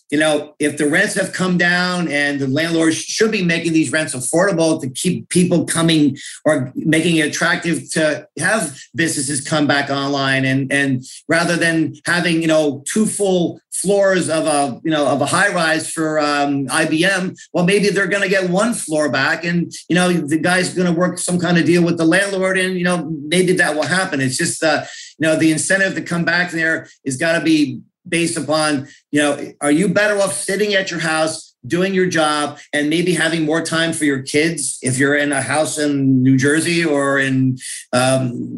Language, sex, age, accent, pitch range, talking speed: English, male, 50-69, American, 150-175 Hz, 205 wpm